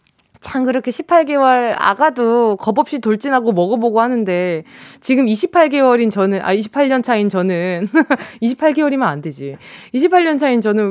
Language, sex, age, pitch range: Korean, female, 20-39, 190-305 Hz